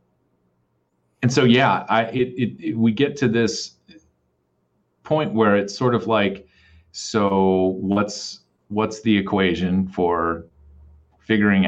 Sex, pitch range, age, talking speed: male, 80-105 Hz, 30-49, 125 wpm